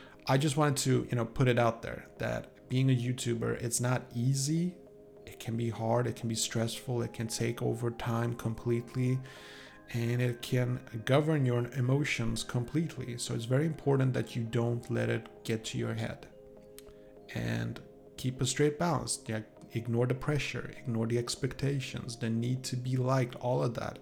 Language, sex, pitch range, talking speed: English, male, 115-135 Hz, 175 wpm